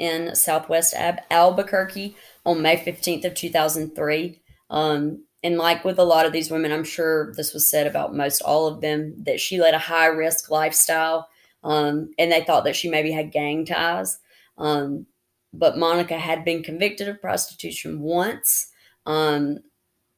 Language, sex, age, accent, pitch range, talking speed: English, female, 30-49, American, 150-175 Hz, 165 wpm